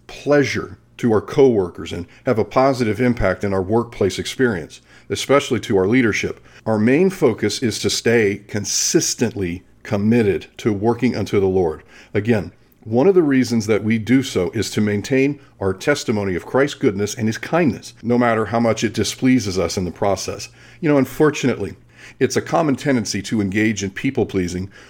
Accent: American